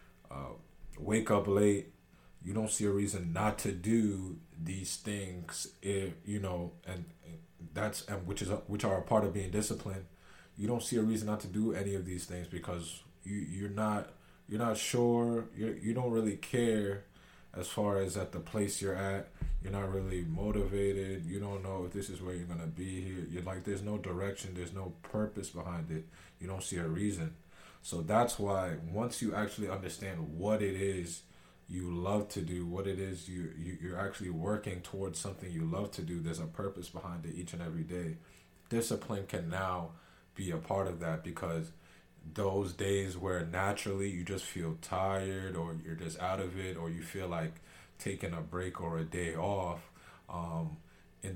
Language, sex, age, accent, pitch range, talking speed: English, male, 20-39, American, 85-100 Hz, 195 wpm